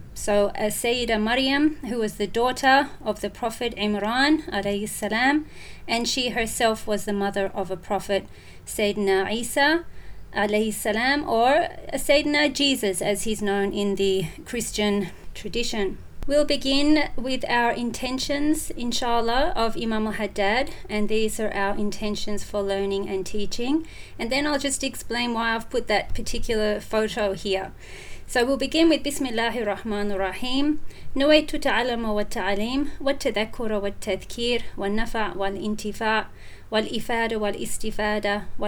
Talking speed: 135 wpm